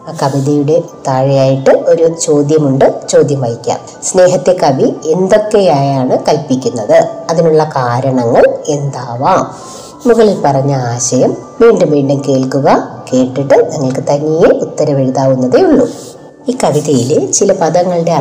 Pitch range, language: 145-240 Hz, Malayalam